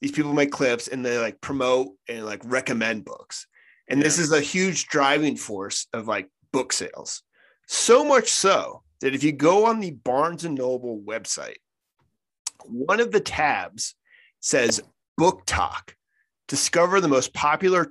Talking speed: 160 wpm